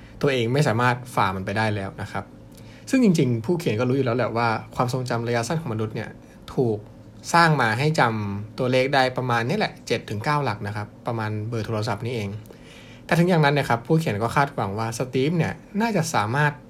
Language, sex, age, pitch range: Thai, male, 20-39, 110-135 Hz